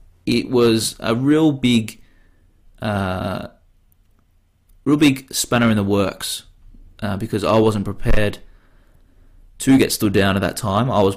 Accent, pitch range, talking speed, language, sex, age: Australian, 95-115 Hz, 135 wpm, English, male, 20-39